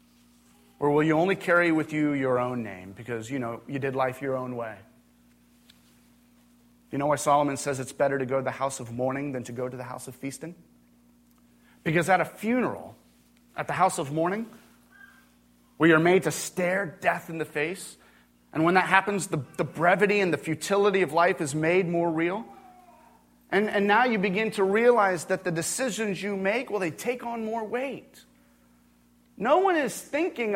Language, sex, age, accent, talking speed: English, male, 30-49, American, 190 wpm